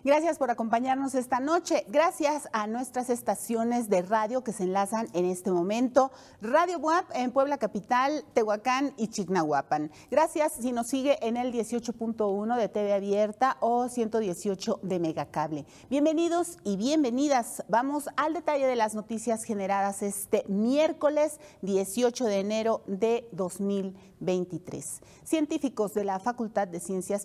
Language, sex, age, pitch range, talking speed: Spanish, female, 40-59, 200-265 Hz, 140 wpm